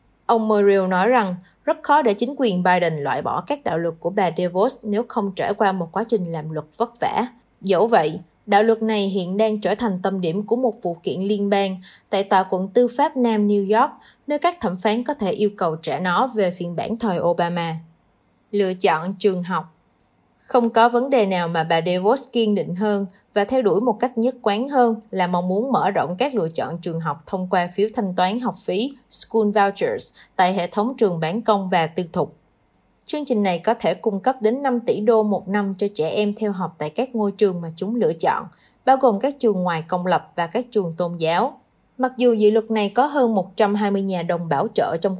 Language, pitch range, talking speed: Vietnamese, 180-235 Hz, 225 wpm